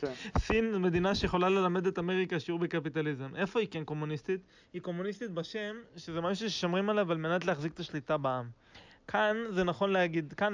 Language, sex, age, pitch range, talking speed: Hebrew, male, 20-39, 150-185 Hz, 175 wpm